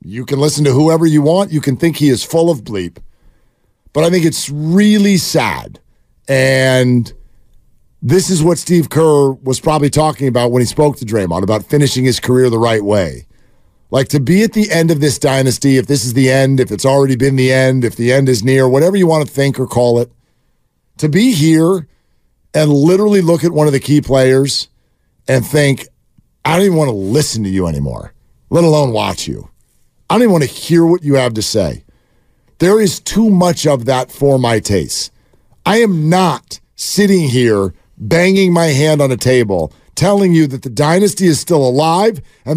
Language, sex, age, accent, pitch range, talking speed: English, male, 50-69, American, 130-185 Hz, 200 wpm